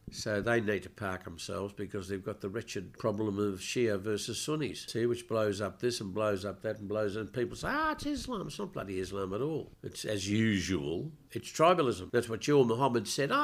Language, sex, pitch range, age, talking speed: English, male, 105-135 Hz, 60-79, 225 wpm